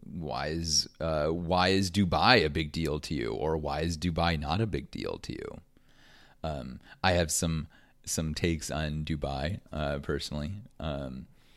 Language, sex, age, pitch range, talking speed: English, male, 30-49, 75-85 Hz, 165 wpm